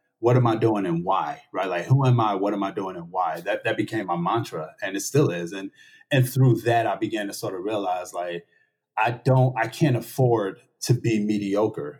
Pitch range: 105-140 Hz